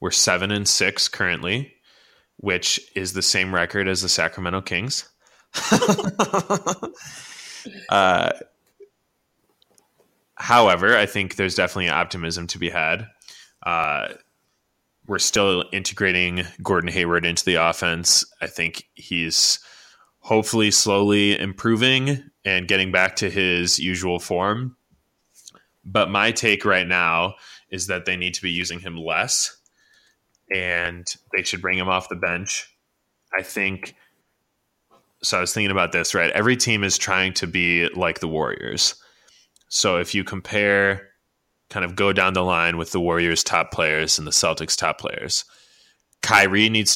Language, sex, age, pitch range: English, male, 20-39, 85-100 Hz